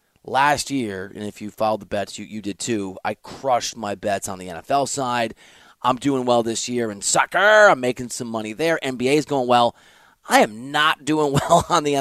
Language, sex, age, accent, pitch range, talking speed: English, male, 30-49, American, 115-175 Hz, 215 wpm